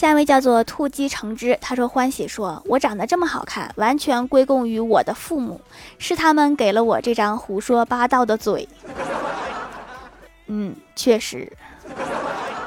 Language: Chinese